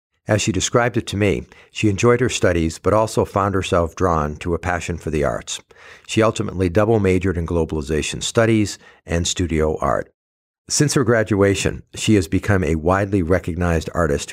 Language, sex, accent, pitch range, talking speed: English, male, American, 85-105 Hz, 170 wpm